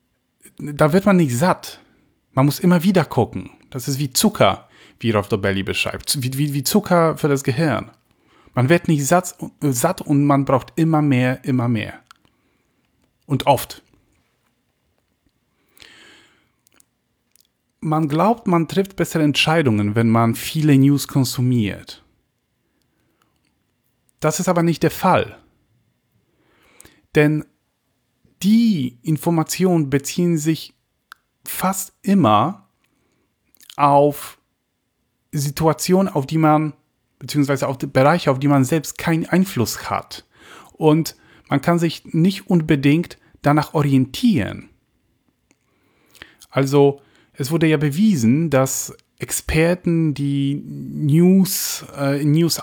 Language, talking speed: German, 110 wpm